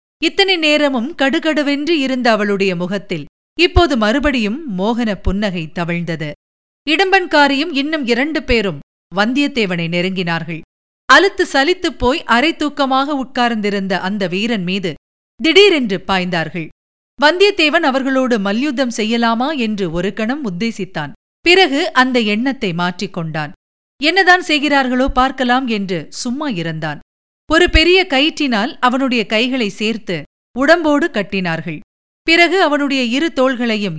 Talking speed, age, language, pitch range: 100 wpm, 50-69, Tamil, 190-285 Hz